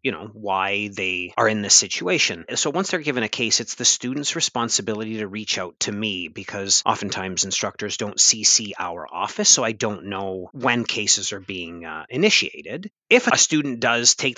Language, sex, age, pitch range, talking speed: English, male, 30-49, 100-125 Hz, 190 wpm